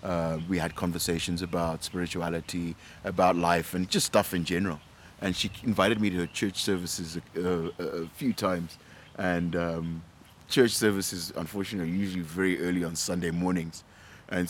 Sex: male